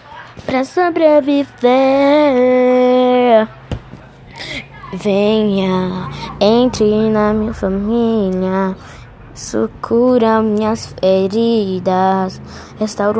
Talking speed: 50 wpm